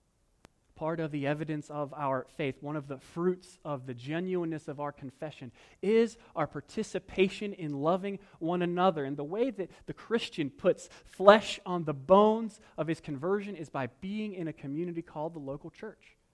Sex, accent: male, American